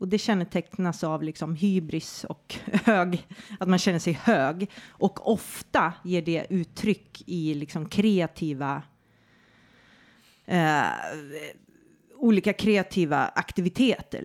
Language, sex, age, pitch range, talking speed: Swedish, female, 30-49, 160-205 Hz, 105 wpm